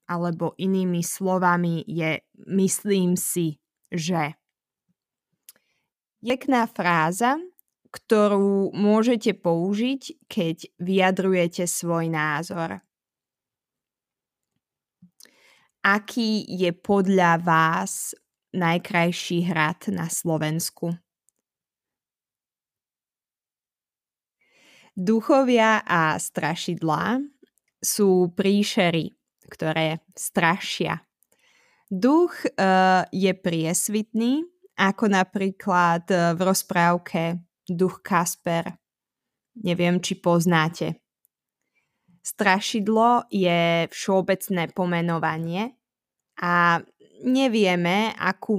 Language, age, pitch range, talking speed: Slovak, 20-39, 170-205 Hz, 65 wpm